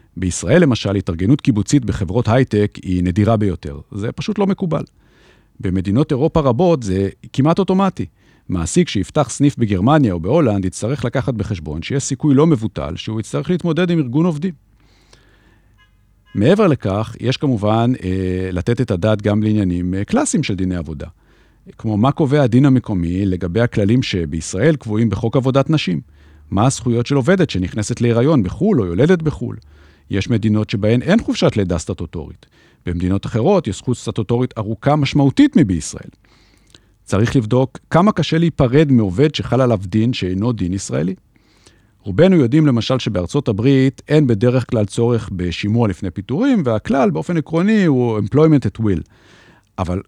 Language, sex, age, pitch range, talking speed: Hebrew, male, 50-69, 95-140 Hz, 145 wpm